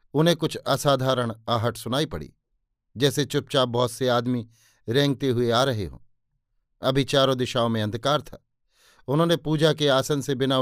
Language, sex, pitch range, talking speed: Hindi, male, 120-145 Hz, 160 wpm